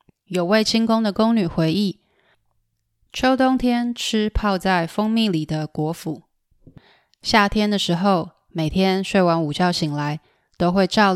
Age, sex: 20-39, female